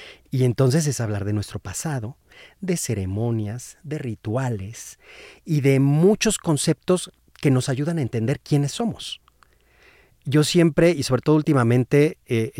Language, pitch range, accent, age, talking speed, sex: Spanish, 110-150 Hz, Mexican, 40-59, 140 wpm, male